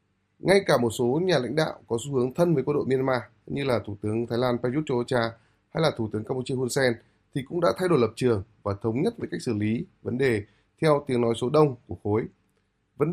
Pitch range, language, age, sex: 110-145 Hz, Vietnamese, 20-39, male